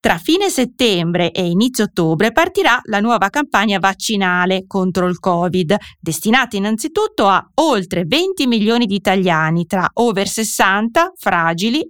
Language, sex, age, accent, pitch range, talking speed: Italian, female, 30-49, native, 180-255 Hz, 130 wpm